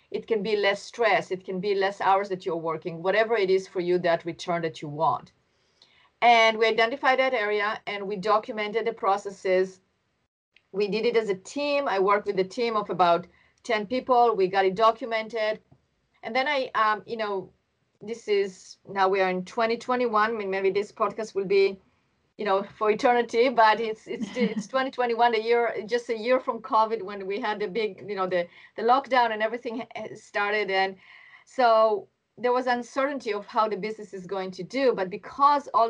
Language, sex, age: English, female, 30-49